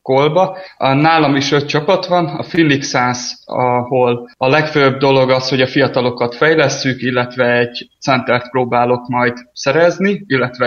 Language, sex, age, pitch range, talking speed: Hungarian, male, 20-39, 125-140 Hz, 140 wpm